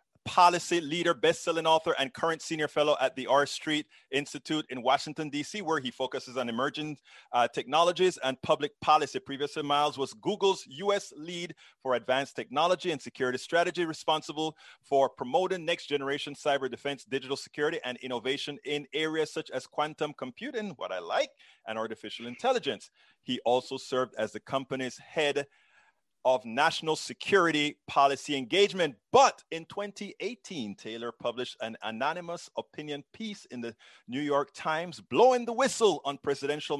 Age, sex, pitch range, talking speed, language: 30-49, male, 130-170 Hz, 150 wpm, English